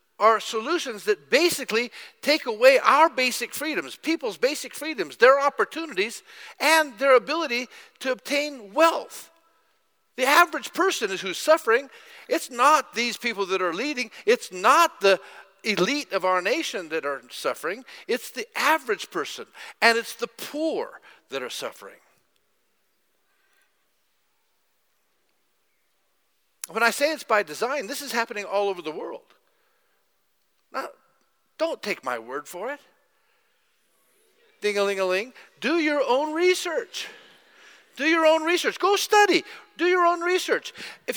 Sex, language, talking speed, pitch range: male, English, 130 wpm, 220-355 Hz